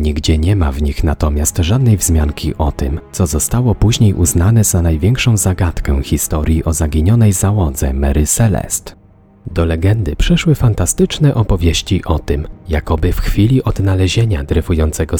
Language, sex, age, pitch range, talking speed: Polish, male, 40-59, 85-120 Hz, 140 wpm